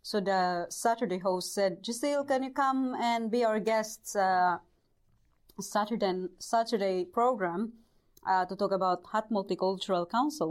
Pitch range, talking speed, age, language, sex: 175-210 Hz, 135 wpm, 30-49, English, female